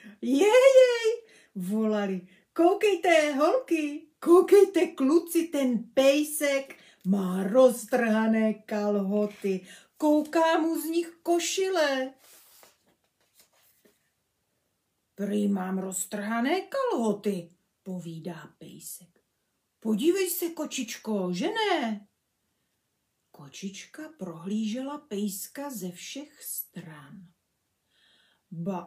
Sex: female